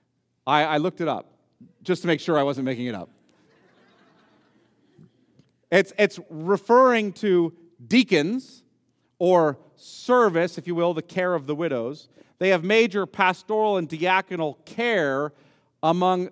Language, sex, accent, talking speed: English, male, American, 135 wpm